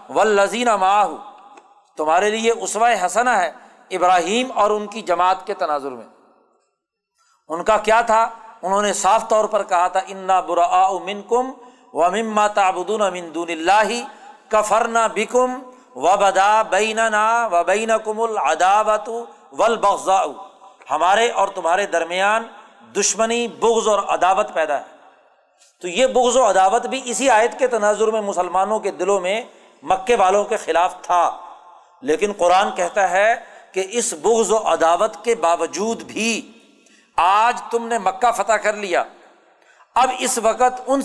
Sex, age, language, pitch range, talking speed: male, 50-69, Urdu, 190-235 Hz, 135 wpm